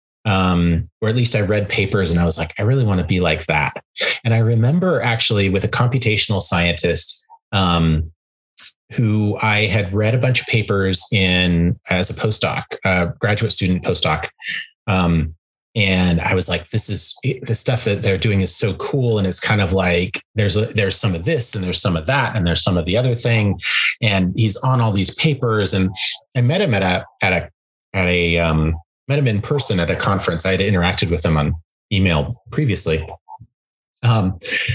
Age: 30-49